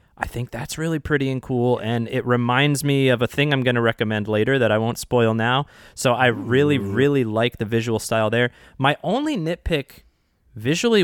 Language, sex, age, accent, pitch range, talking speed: English, male, 20-39, American, 100-135 Hz, 200 wpm